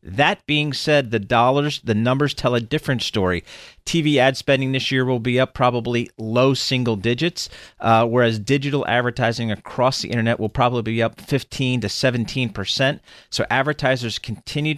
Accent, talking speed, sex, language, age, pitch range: American, 160 wpm, male, English, 40-59, 110-130 Hz